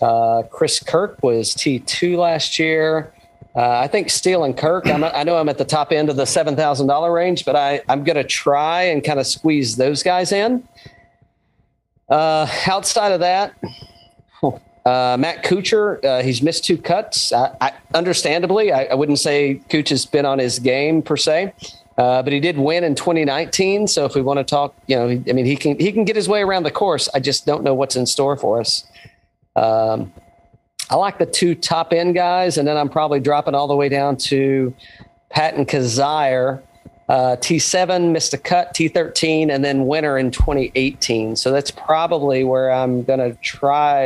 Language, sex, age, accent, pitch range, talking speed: English, male, 40-59, American, 130-165 Hz, 185 wpm